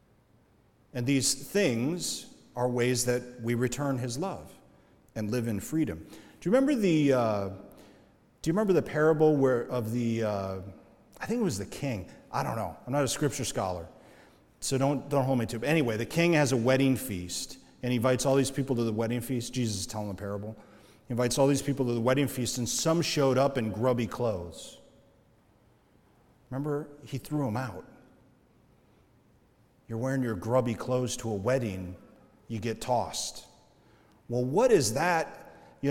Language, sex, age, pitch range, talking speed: English, male, 40-59, 115-145 Hz, 180 wpm